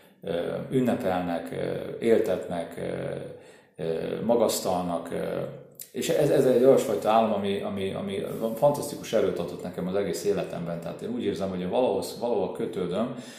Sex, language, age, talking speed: male, Hungarian, 30-49, 120 wpm